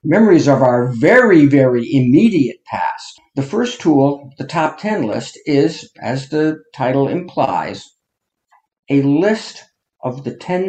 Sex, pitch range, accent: male, 130-175 Hz, American